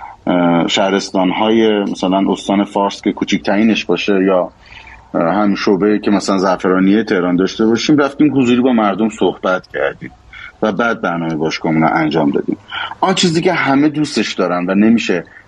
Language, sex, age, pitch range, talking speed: Persian, male, 30-49, 100-135 Hz, 145 wpm